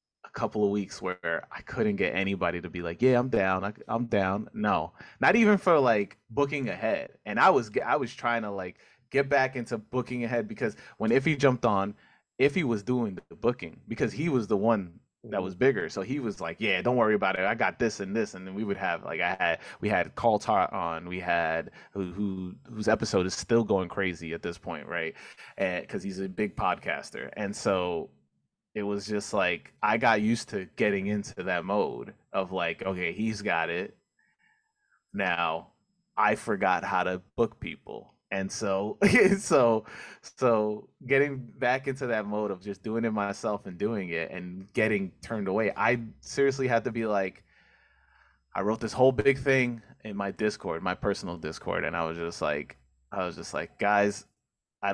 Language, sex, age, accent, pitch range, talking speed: English, male, 20-39, American, 95-120 Hz, 200 wpm